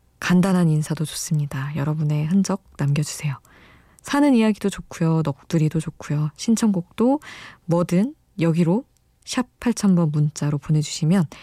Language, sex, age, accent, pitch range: Korean, female, 20-39, native, 150-185 Hz